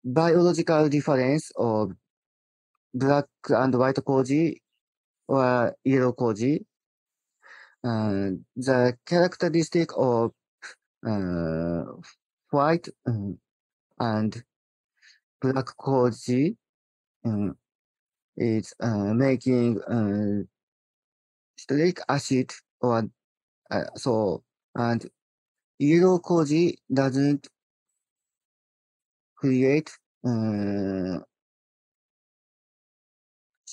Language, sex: English, male